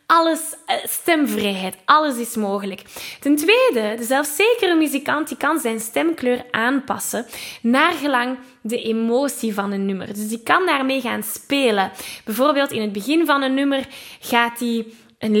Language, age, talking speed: Dutch, 10-29, 145 wpm